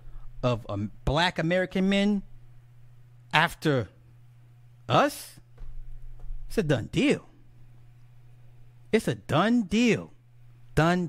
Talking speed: 90 wpm